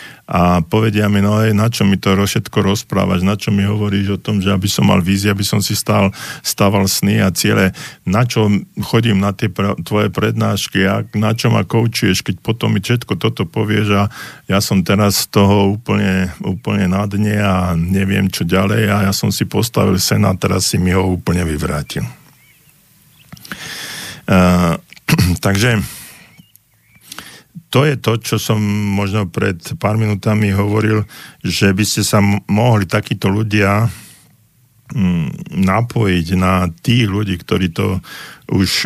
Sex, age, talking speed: male, 50-69, 160 wpm